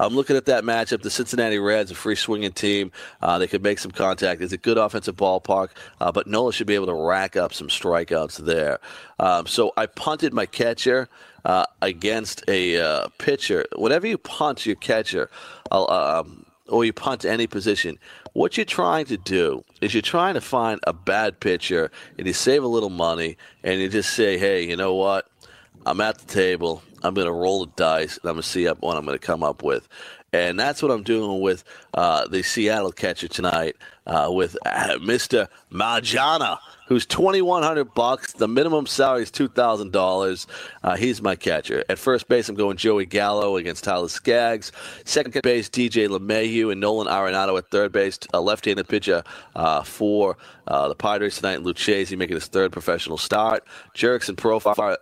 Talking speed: 185 wpm